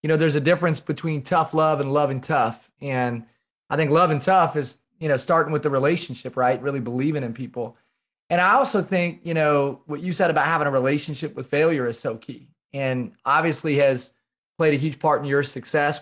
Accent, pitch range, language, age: American, 135-160 Hz, English, 30-49